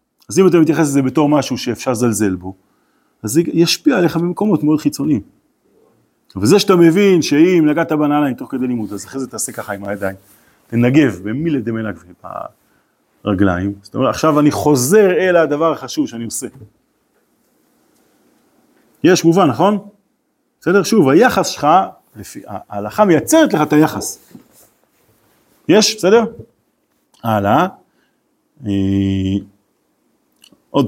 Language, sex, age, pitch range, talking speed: Hebrew, male, 40-59, 120-200 Hz, 125 wpm